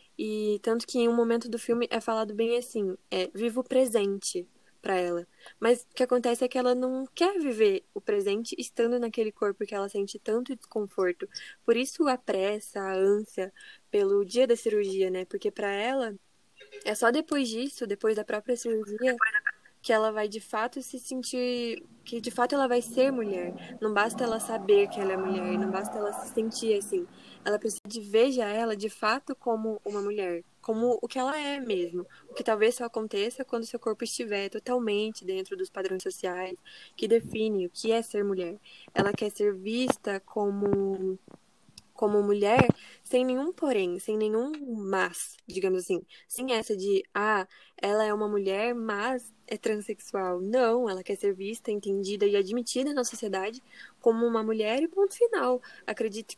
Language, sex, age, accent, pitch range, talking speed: Portuguese, female, 10-29, Brazilian, 205-250 Hz, 180 wpm